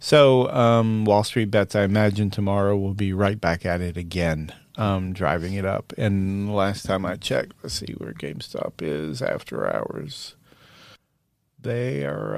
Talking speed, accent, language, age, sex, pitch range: 160 wpm, American, English, 30-49, male, 100-125 Hz